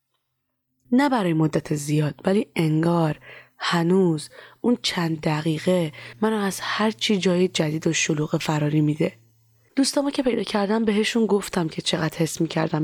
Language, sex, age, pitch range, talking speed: Persian, female, 20-39, 155-200 Hz, 135 wpm